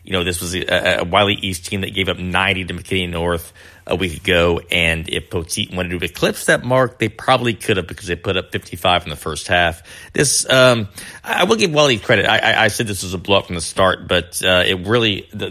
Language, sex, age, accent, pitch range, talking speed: English, male, 30-49, American, 90-120 Hz, 245 wpm